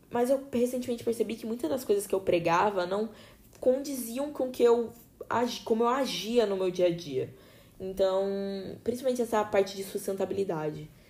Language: Portuguese